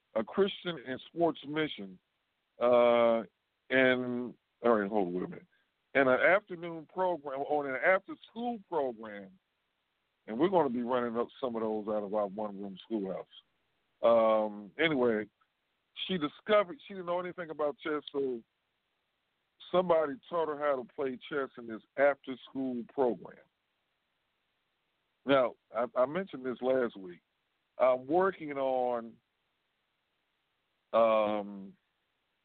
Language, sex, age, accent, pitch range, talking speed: English, male, 50-69, American, 105-150 Hz, 130 wpm